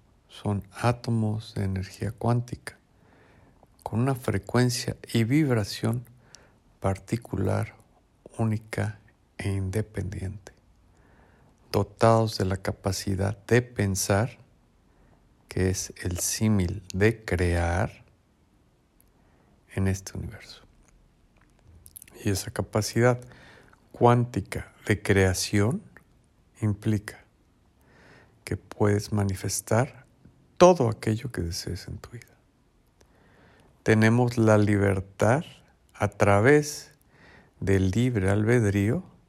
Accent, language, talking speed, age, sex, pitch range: Mexican, Spanish, 80 wpm, 50-69, male, 100-120 Hz